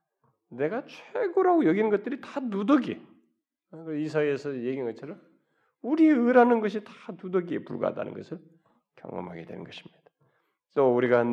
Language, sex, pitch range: Korean, male, 120-185 Hz